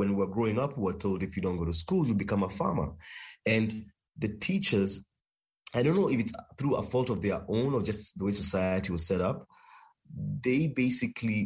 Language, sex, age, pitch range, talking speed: English, male, 30-49, 95-120 Hz, 220 wpm